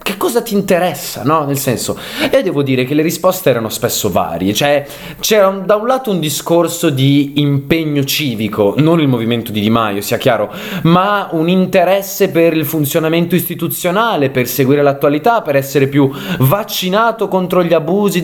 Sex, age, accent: male, 20-39, native